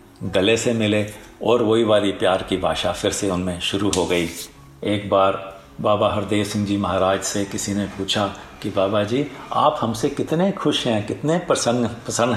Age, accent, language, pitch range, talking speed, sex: 50-69, native, Hindi, 100-120 Hz, 180 wpm, male